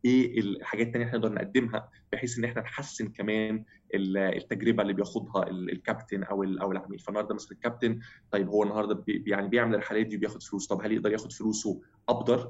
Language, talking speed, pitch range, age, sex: Arabic, 175 wpm, 105-120 Hz, 20-39, male